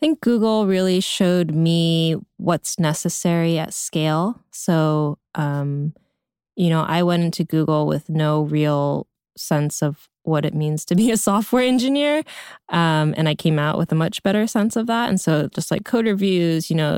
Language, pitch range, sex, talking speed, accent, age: English, 150-180 Hz, female, 180 wpm, American, 20-39